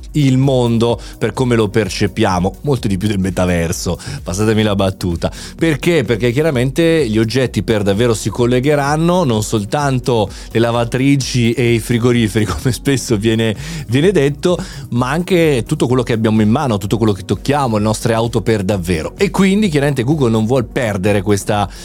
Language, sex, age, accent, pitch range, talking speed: Italian, male, 30-49, native, 110-145 Hz, 160 wpm